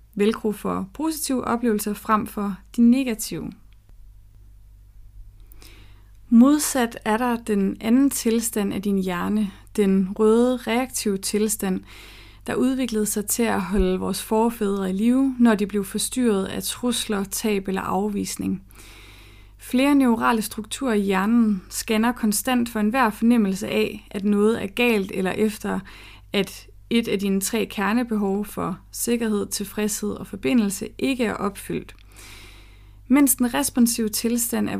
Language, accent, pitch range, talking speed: Danish, native, 190-235 Hz, 130 wpm